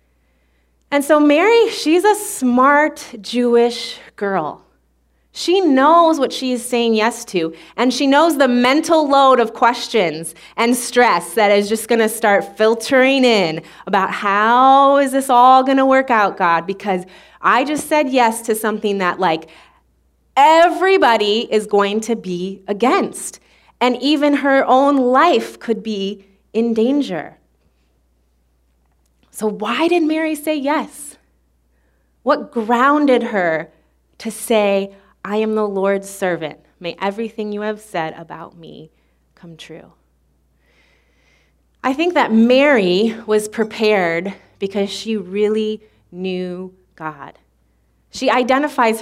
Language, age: English, 30-49